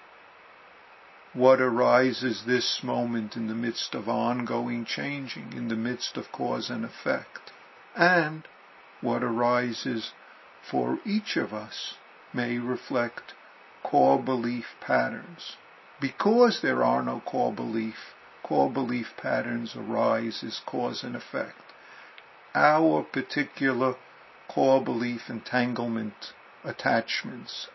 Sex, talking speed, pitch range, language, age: male, 105 wpm, 115-135 Hz, English, 50-69